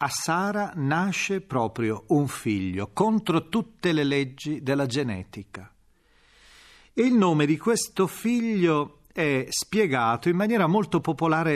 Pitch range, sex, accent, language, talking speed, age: 120-175 Hz, male, native, Italian, 125 wpm, 40-59